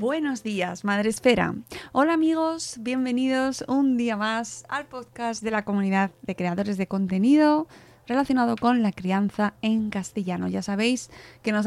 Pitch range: 195-240 Hz